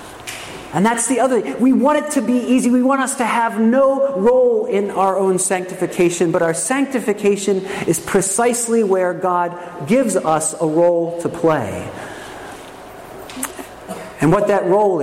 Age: 40-59